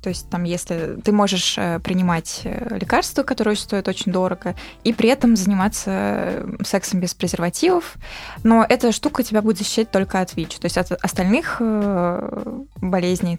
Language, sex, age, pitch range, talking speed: Russian, female, 20-39, 190-225 Hz, 150 wpm